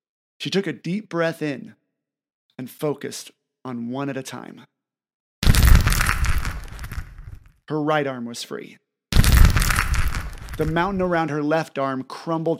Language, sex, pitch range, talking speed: English, male, 115-155 Hz, 120 wpm